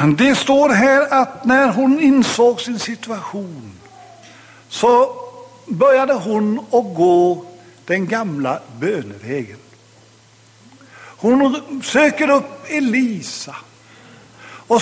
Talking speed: 90 wpm